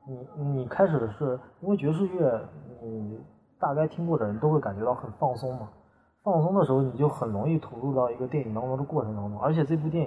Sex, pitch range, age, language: male, 120-155 Hz, 20-39, Chinese